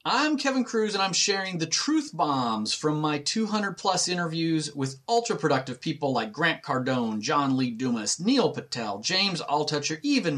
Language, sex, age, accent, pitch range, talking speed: English, male, 30-49, American, 155-230 Hz, 170 wpm